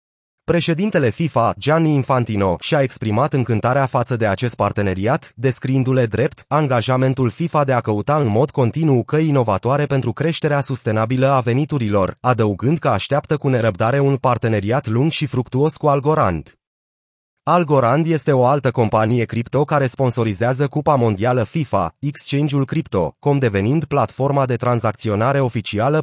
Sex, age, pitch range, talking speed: male, 30-49, 115-145 Hz, 135 wpm